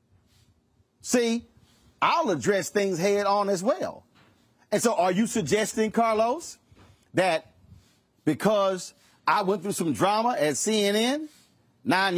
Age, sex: 40-59, male